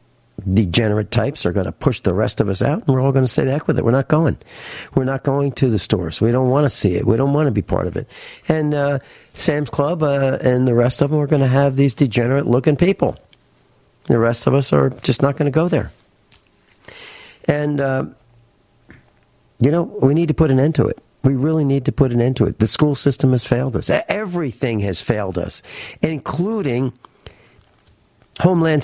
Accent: American